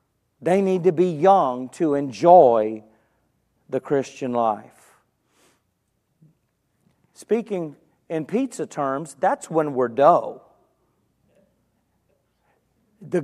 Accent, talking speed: American, 85 wpm